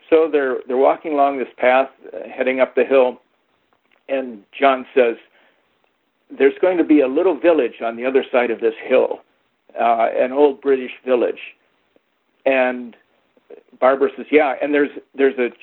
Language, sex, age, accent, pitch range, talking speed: English, male, 50-69, American, 130-180 Hz, 155 wpm